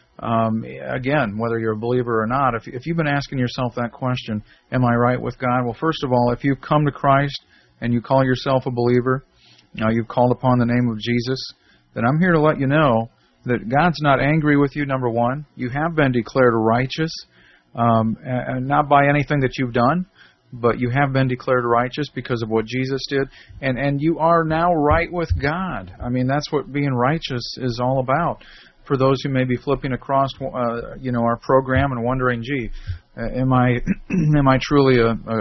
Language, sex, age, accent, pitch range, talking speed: English, male, 40-59, American, 115-140 Hz, 205 wpm